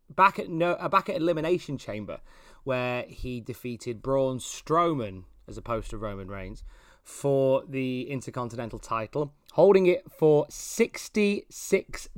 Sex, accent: male, British